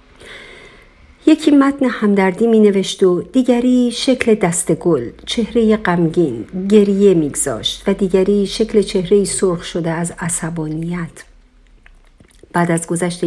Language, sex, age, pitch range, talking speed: Persian, female, 50-69, 170-225 Hz, 105 wpm